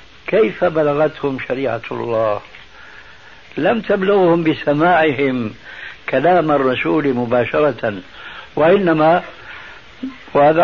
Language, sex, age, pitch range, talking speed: Arabic, male, 60-79, 140-175 Hz, 70 wpm